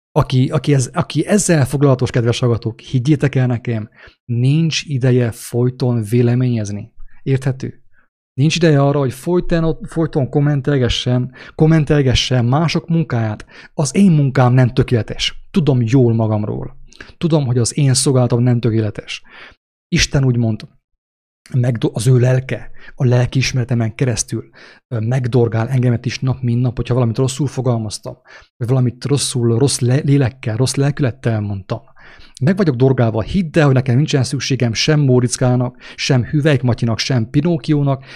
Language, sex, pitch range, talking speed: English, male, 120-145 Hz, 130 wpm